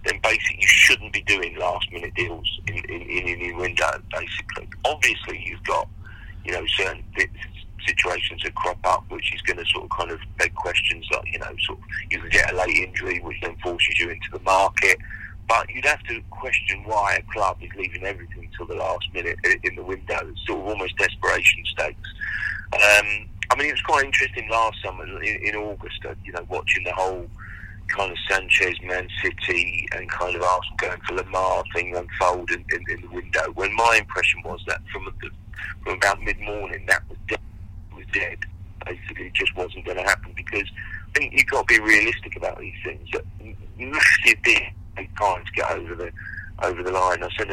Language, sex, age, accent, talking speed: English, male, 40-59, British, 200 wpm